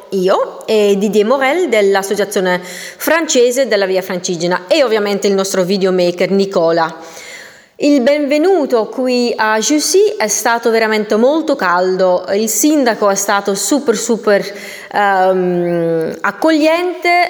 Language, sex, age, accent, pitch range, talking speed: Italian, female, 30-49, native, 190-275 Hz, 115 wpm